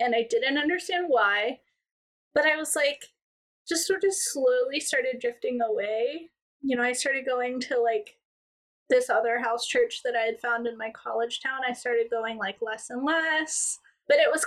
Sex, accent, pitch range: female, American, 255-355 Hz